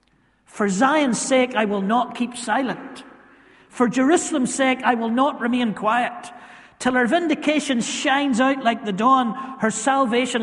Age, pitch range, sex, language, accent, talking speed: 40-59, 185-245 Hz, male, English, British, 150 wpm